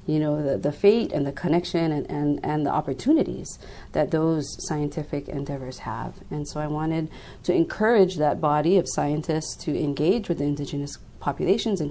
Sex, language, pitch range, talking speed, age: female, English, 145-170 Hz, 165 wpm, 30-49